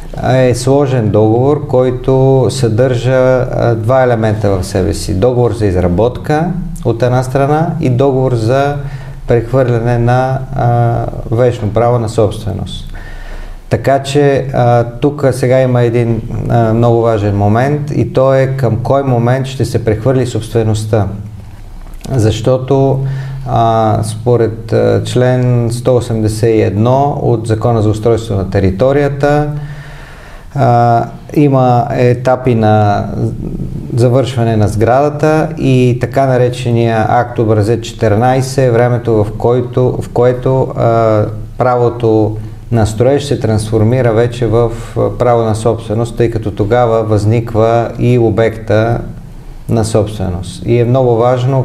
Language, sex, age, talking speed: Bulgarian, male, 40-59, 120 wpm